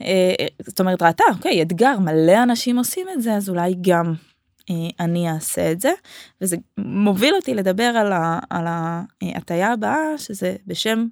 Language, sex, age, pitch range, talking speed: Hebrew, female, 20-39, 175-240 Hz, 145 wpm